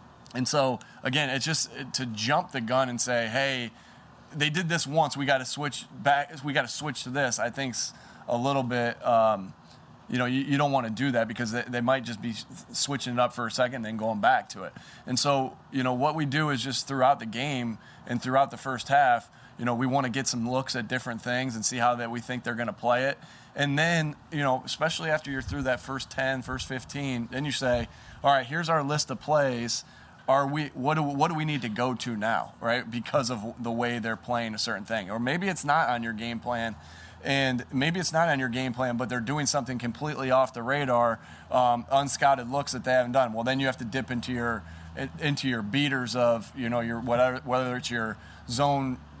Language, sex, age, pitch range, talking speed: English, male, 20-39, 120-140 Hz, 240 wpm